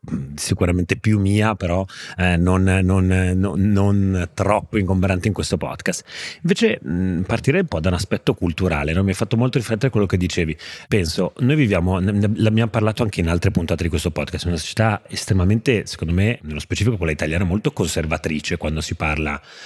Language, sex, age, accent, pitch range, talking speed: Italian, male, 30-49, native, 85-105 Hz, 165 wpm